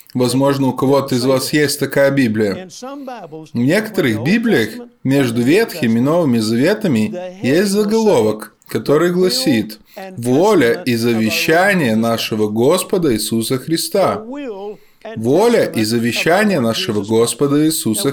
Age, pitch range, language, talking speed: 20-39, 120-175 Hz, Russian, 110 wpm